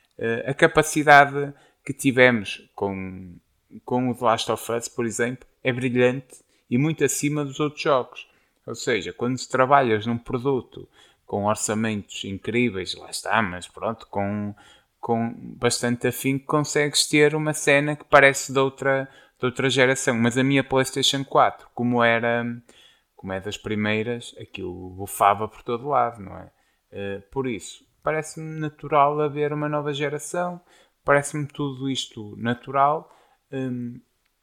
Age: 20-39